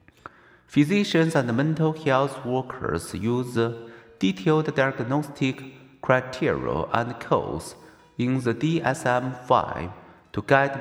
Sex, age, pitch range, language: male, 50-69, 120-150 Hz, Chinese